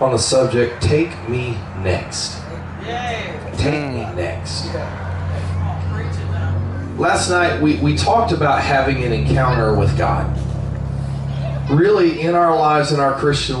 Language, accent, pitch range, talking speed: English, American, 110-150 Hz, 120 wpm